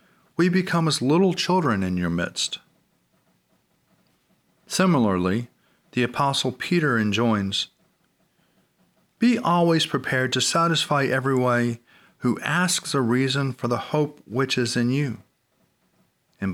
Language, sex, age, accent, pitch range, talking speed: English, male, 40-59, American, 110-140 Hz, 115 wpm